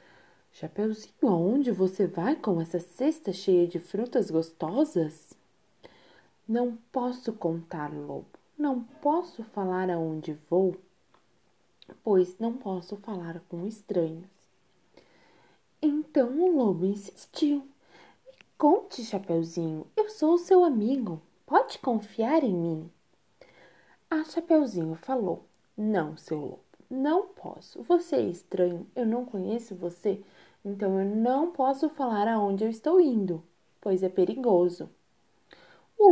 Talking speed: 115 wpm